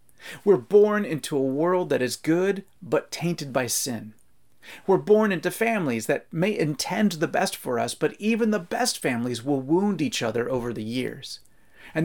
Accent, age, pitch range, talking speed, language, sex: American, 30-49, 135-185 Hz, 180 wpm, English, male